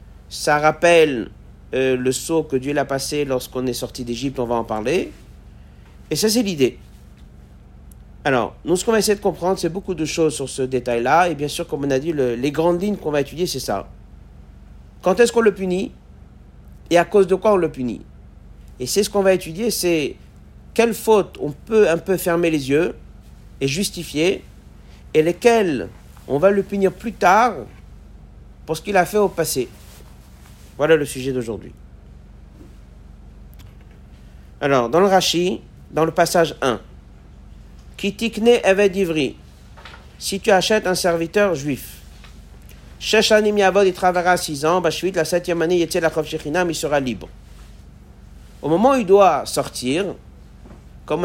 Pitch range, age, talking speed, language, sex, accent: 120-185 Hz, 50-69, 165 wpm, French, male, French